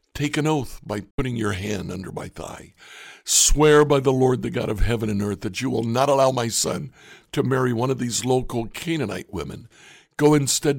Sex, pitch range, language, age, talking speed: male, 115-145 Hz, English, 60-79, 205 wpm